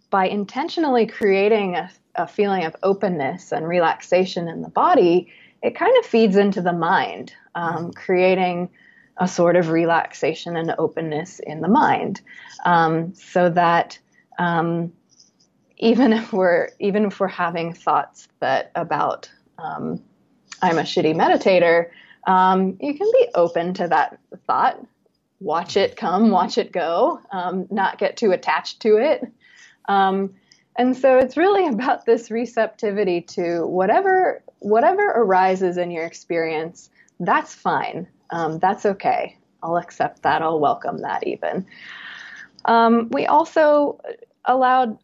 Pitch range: 175-240 Hz